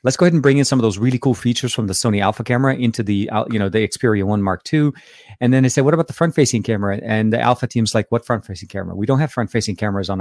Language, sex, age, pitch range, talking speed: English, male, 30-49, 105-125 Hz, 290 wpm